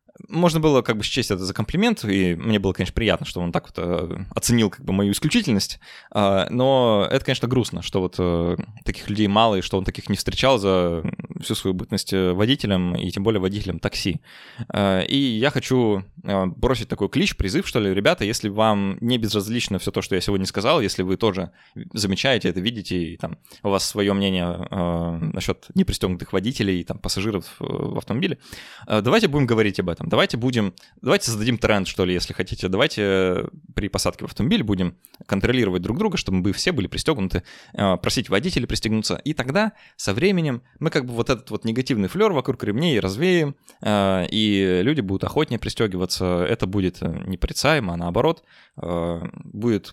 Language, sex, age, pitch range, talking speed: Russian, male, 20-39, 95-120 Hz, 175 wpm